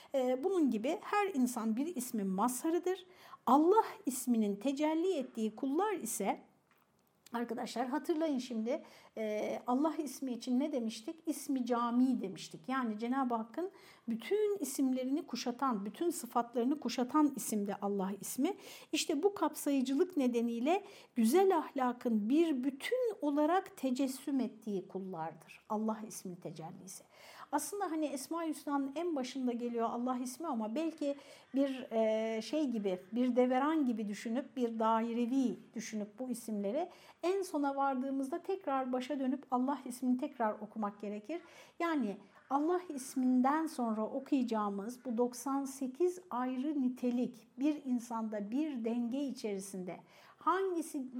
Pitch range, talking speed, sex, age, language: 230-295 Hz, 120 wpm, female, 60-79, Turkish